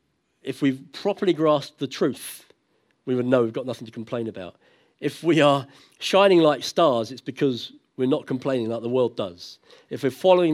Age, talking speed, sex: 50-69, 190 wpm, male